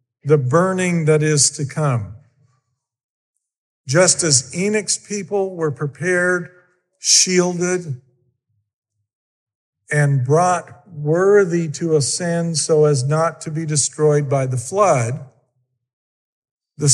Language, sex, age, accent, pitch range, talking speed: English, male, 50-69, American, 135-180 Hz, 100 wpm